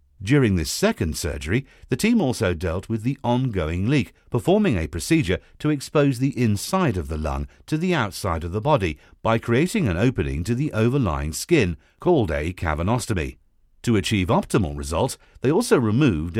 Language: English